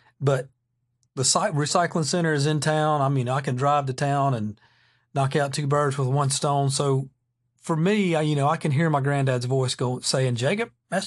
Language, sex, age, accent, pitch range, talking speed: English, male, 40-59, American, 125-150 Hz, 205 wpm